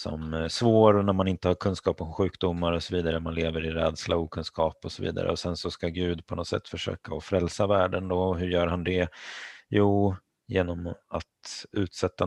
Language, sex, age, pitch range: Swedish, male, 30-49, 85-100 Hz